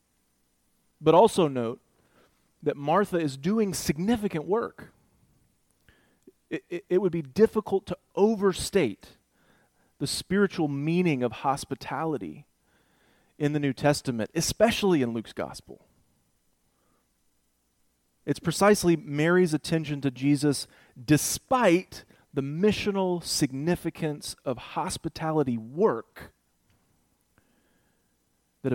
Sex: male